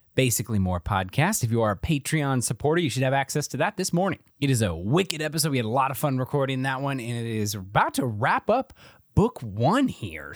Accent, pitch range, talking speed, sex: American, 115-155 Hz, 235 wpm, male